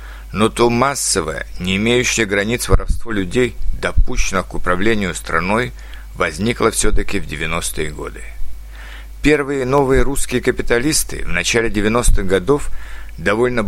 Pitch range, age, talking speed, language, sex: 90-125 Hz, 60-79, 115 wpm, Russian, male